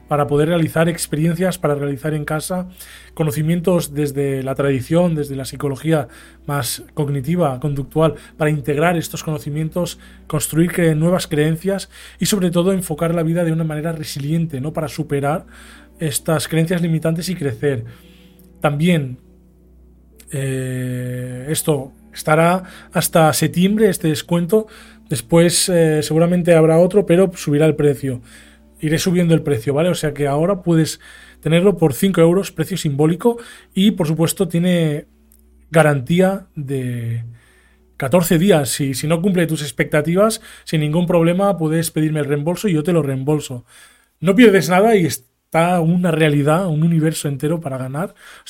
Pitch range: 145-175 Hz